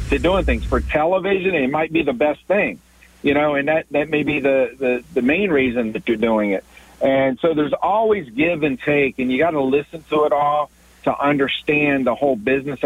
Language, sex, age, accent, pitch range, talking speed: English, male, 50-69, American, 125-145 Hz, 220 wpm